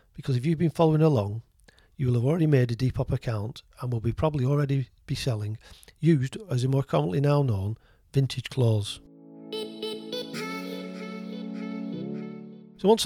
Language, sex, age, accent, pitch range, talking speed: English, male, 40-59, British, 115-160 Hz, 145 wpm